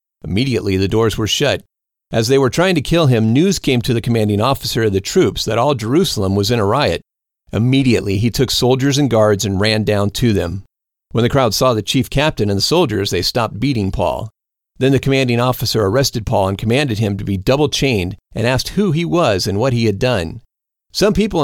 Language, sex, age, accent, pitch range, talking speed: English, male, 40-59, American, 110-140 Hz, 215 wpm